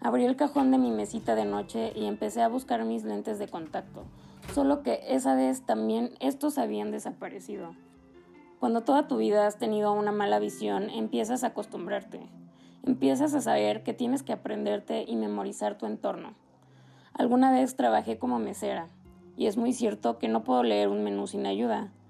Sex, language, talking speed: female, Spanish, 175 wpm